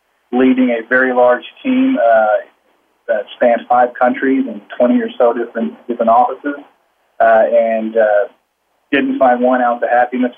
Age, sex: 30-49, male